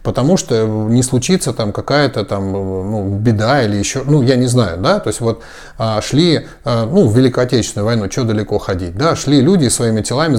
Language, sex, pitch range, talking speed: Russian, male, 110-145 Hz, 195 wpm